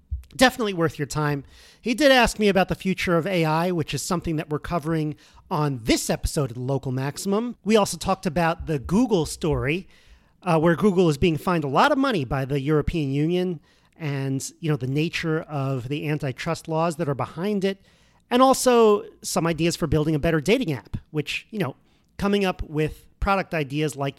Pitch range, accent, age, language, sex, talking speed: 150-185 Hz, American, 40-59, English, male, 195 wpm